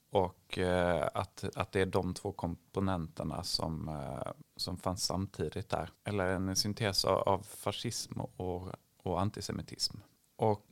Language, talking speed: Swedish, 125 wpm